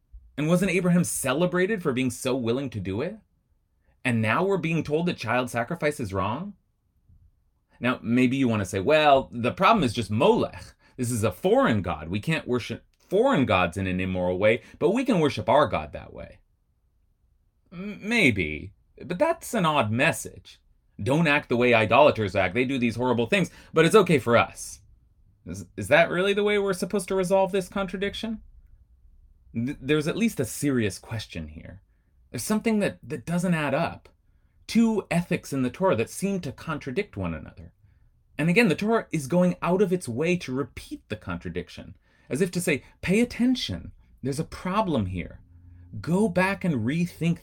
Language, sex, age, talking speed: English, male, 30-49, 180 wpm